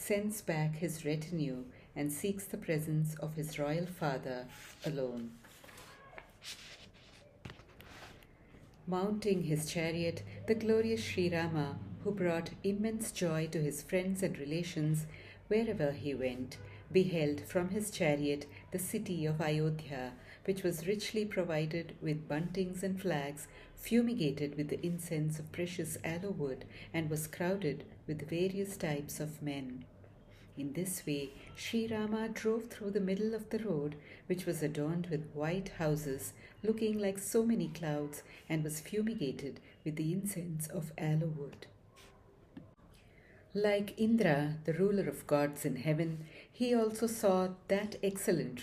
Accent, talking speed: Indian, 135 wpm